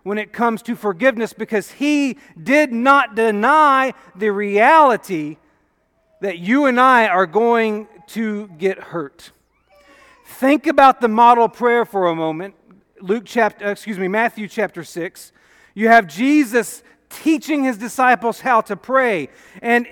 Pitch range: 210-275 Hz